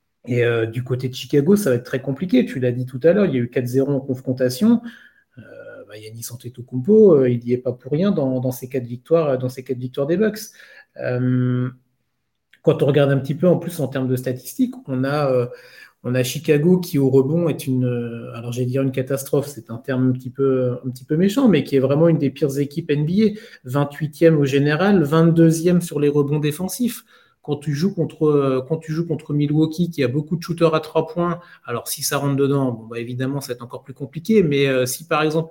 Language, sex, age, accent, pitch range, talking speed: French, male, 30-49, French, 130-160 Hz, 235 wpm